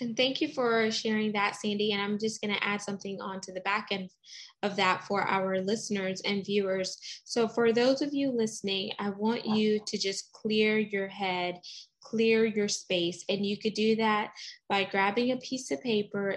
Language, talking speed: English, 200 wpm